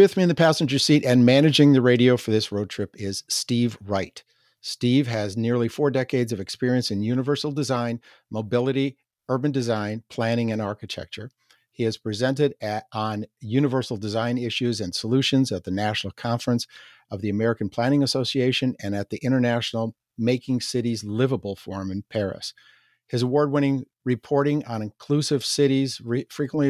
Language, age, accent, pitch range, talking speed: English, 50-69, American, 110-130 Hz, 155 wpm